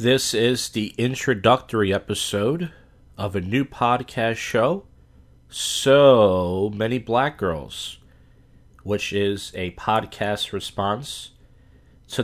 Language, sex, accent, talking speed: English, male, American, 100 wpm